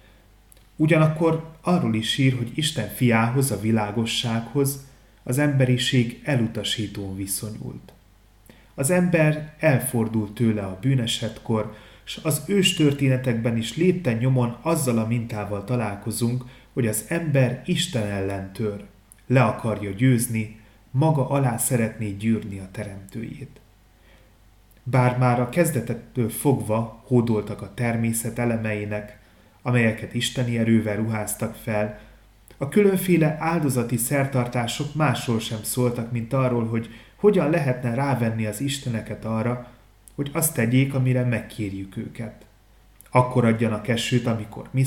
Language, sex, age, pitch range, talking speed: Hungarian, male, 30-49, 105-130 Hz, 115 wpm